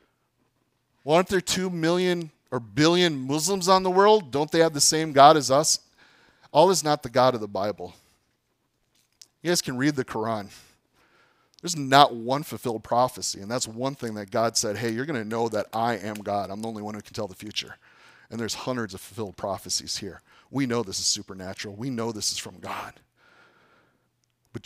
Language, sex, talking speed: English, male, 200 wpm